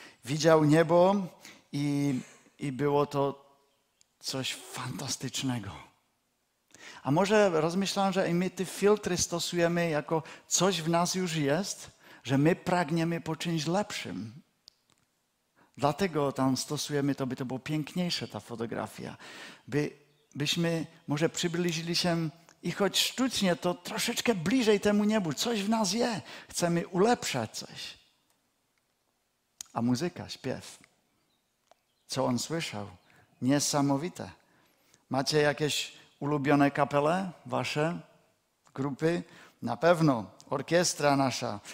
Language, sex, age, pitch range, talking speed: Czech, male, 50-69, 135-175 Hz, 110 wpm